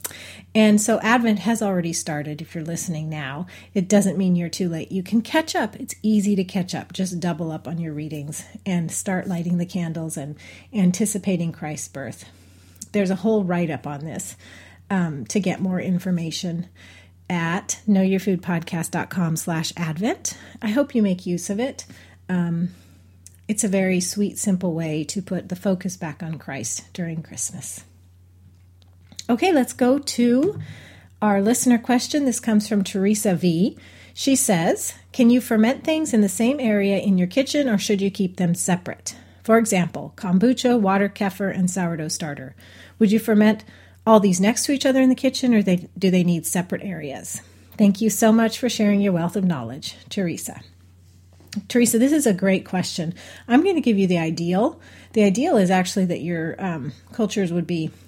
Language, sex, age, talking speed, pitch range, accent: English, female, 30-49, 175 wpm, 160-215 Hz, American